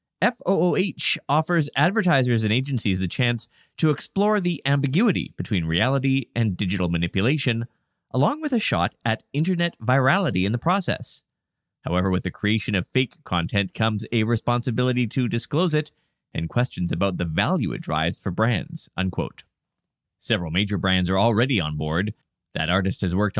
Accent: American